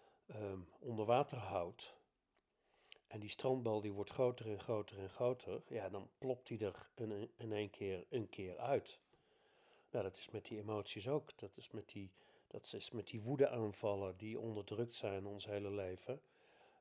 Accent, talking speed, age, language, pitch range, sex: Dutch, 170 wpm, 50-69, Dutch, 100-120 Hz, male